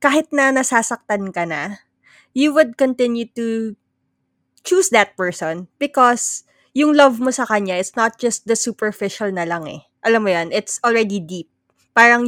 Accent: native